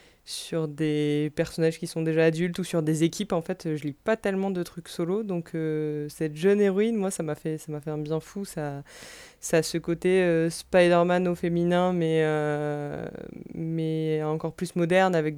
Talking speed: 200 wpm